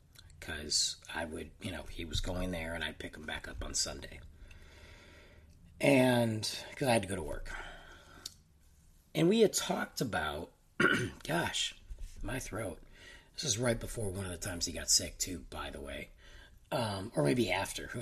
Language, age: English, 40-59